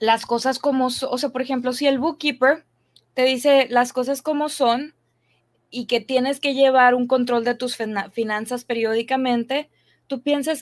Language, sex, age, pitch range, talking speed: English, female, 20-39, 240-295 Hz, 165 wpm